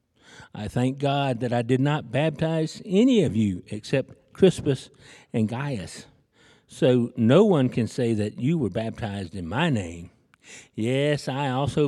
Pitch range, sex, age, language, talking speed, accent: 110-150 Hz, male, 60-79, English, 150 wpm, American